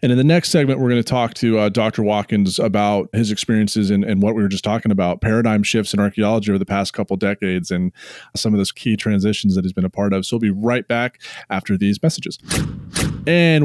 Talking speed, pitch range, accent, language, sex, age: 235 wpm, 95-115 Hz, American, English, male, 20-39